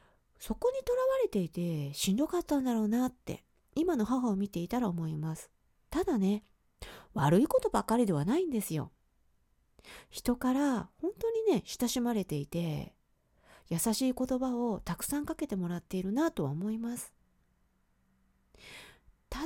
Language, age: Japanese, 40-59